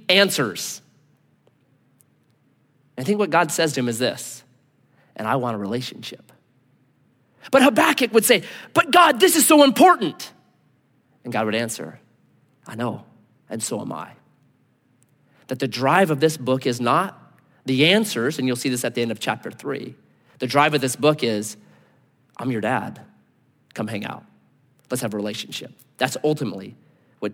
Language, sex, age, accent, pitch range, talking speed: English, male, 30-49, American, 130-195 Hz, 160 wpm